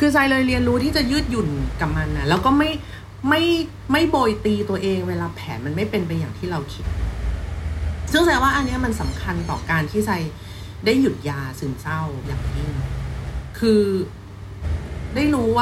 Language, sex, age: Thai, female, 30-49